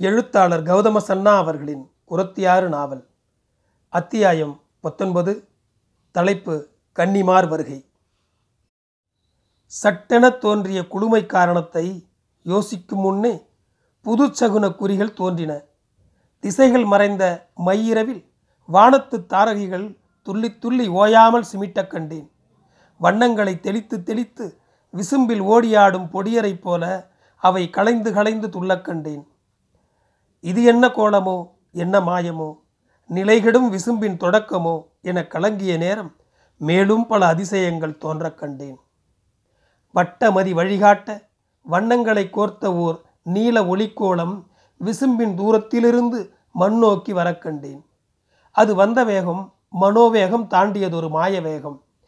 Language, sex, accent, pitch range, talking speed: Tamil, male, native, 165-215 Hz, 85 wpm